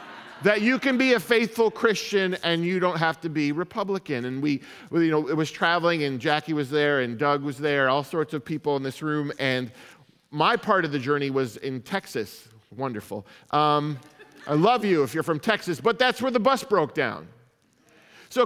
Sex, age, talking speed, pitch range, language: male, 40-59, 200 wpm, 125-180 Hz, English